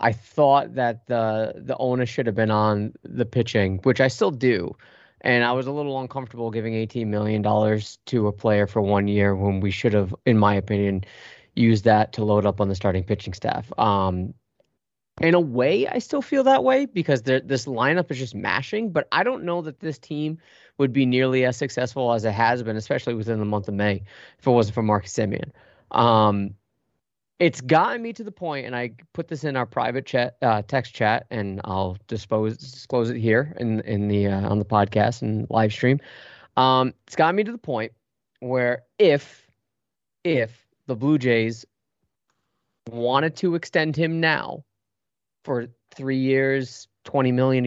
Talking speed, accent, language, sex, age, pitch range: 185 wpm, American, English, male, 20-39, 110-135 Hz